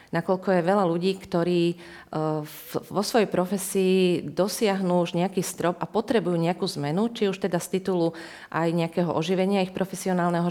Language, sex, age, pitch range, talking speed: Slovak, female, 30-49, 155-190 Hz, 150 wpm